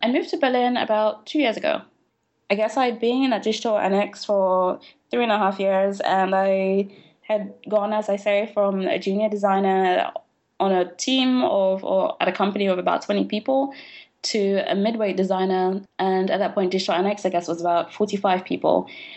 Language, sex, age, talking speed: English, female, 20-39, 190 wpm